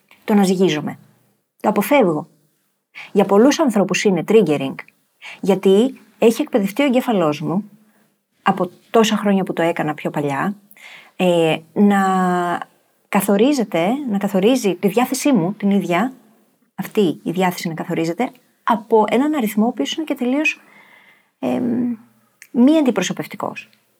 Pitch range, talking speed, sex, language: 180-245 Hz, 125 wpm, female, Greek